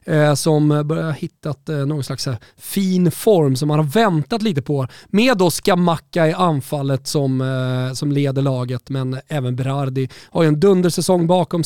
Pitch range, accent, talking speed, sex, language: 140-190 Hz, native, 165 wpm, male, Swedish